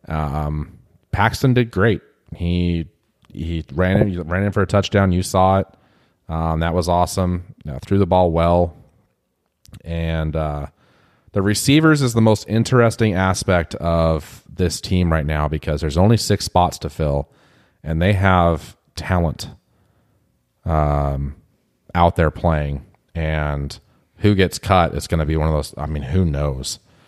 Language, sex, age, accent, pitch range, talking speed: English, male, 30-49, American, 80-100 Hz, 155 wpm